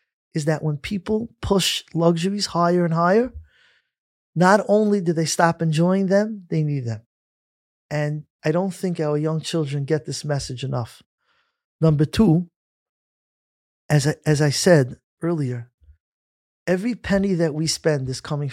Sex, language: male, English